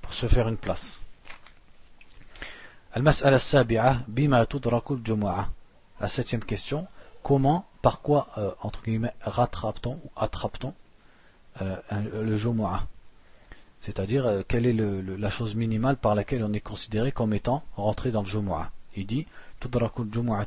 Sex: male